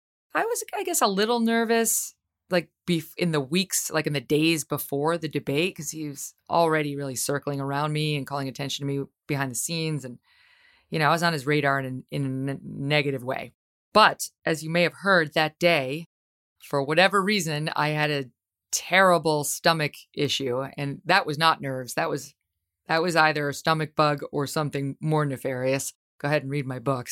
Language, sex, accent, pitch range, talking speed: English, female, American, 140-175 Hz, 190 wpm